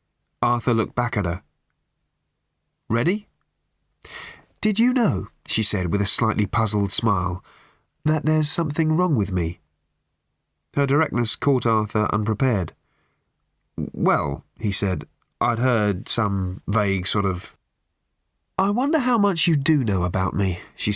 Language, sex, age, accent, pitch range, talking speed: English, male, 30-49, British, 100-160 Hz, 130 wpm